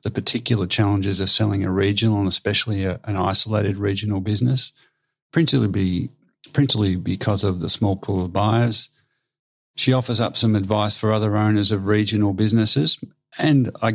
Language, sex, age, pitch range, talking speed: English, male, 50-69, 105-130 Hz, 160 wpm